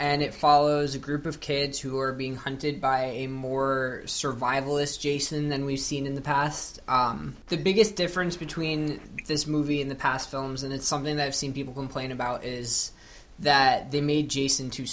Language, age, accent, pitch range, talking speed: English, 20-39, American, 130-145 Hz, 195 wpm